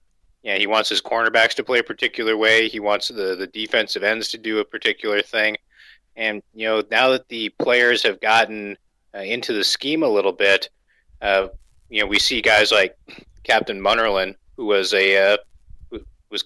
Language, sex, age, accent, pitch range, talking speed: English, male, 30-49, American, 100-115 Hz, 190 wpm